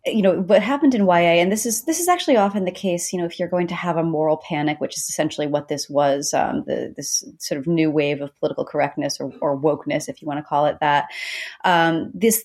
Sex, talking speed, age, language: female, 260 wpm, 30-49, English